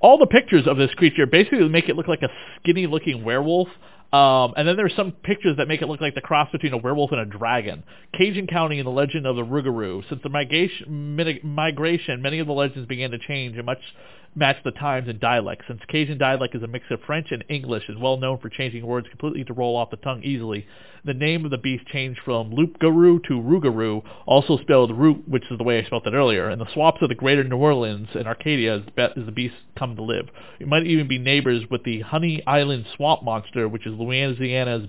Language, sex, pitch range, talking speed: English, male, 115-155 Hz, 230 wpm